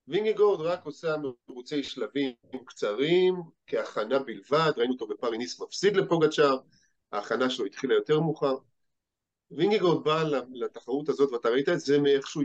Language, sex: Hebrew, male